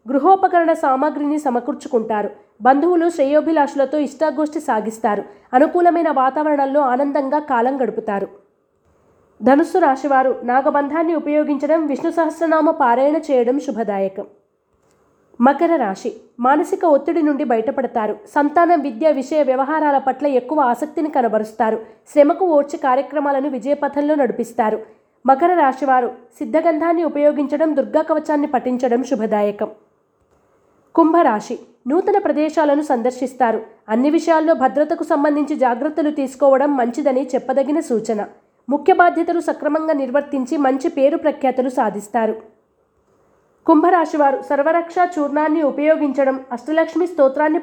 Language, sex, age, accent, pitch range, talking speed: Telugu, female, 20-39, native, 250-315 Hz, 95 wpm